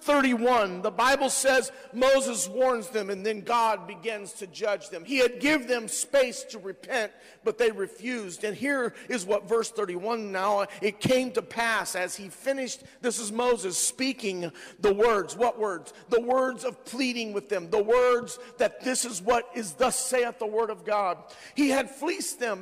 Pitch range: 205-255 Hz